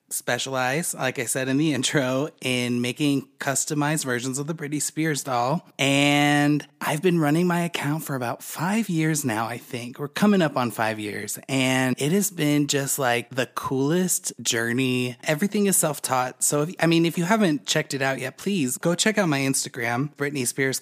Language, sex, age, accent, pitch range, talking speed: English, male, 20-39, American, 130-165 Hz, 185 wpm